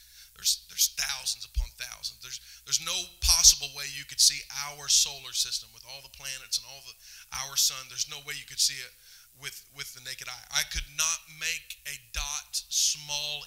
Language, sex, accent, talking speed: English, male, American, 195 wpm